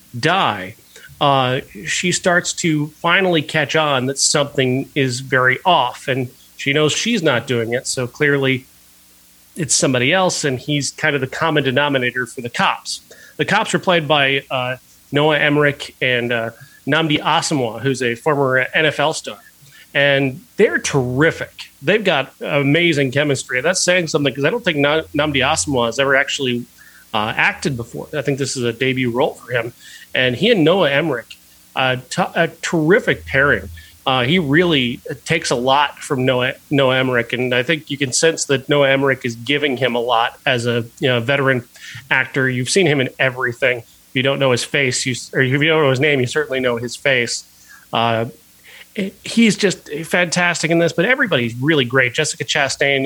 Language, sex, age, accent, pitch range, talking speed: English, male, 30-49, American, 130-155 Hz, 175 wpm